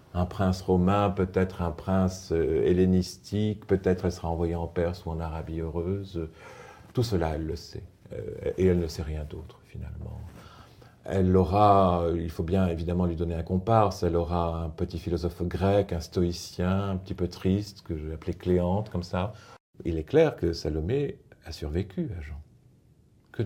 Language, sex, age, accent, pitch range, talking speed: French, male, 50-69, French, 85-100 Hz, 175 wpm